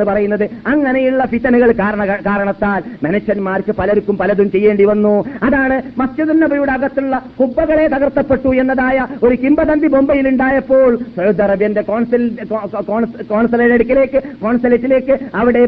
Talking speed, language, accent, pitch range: 75 wpm, Malayalam, native, 210-260 Hz